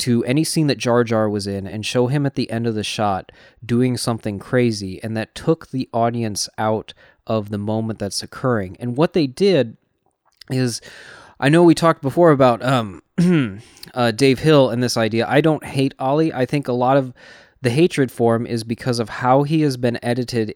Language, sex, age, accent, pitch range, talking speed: English, male, 20-39, American, 110-130 Hz, 205 wpm